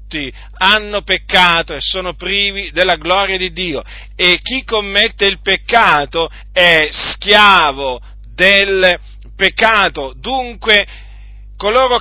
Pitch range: 150-210 Hz